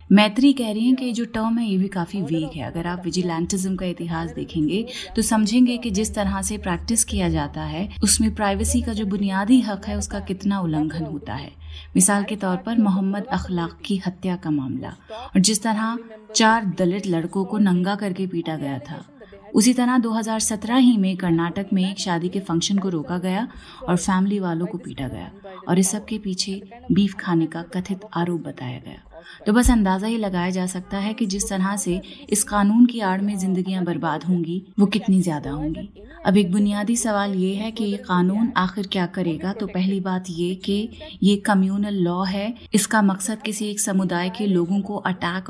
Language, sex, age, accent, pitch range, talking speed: Hindi, female, 30-49, native, 180-210 Hz, 195 wpm